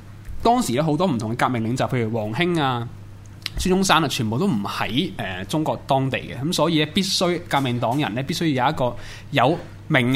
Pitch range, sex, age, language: 110-155 Hz, male, 20-39, Chinese